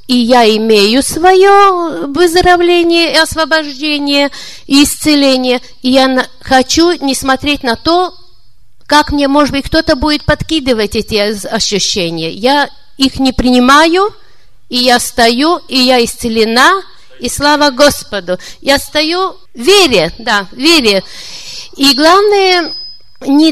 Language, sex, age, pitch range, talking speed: Russian, female, 50-69, 250-320 Hz, 120 wpm